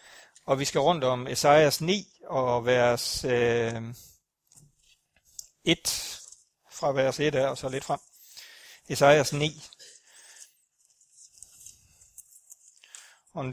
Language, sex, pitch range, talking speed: Danish, male, 130-160 Hz, 100 wpm